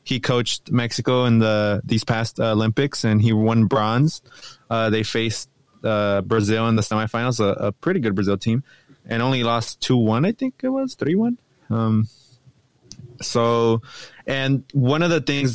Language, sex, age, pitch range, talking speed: English, male, 20-39, 110-135 Hz, 165 wpm